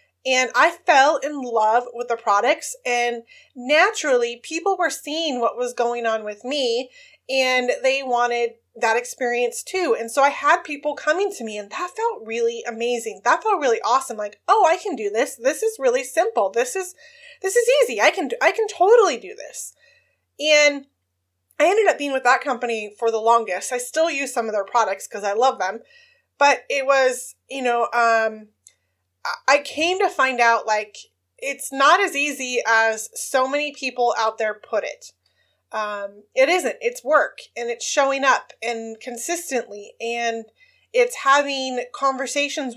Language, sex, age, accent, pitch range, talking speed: English, female, 20-39, American, 230-320 Hz, 175 wpm